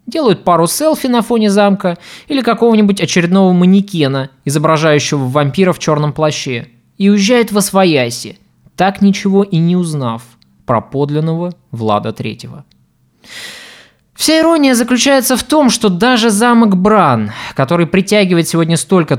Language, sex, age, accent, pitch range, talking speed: Russian, male, 20-39, native, 135-210 Hz, 130 wpm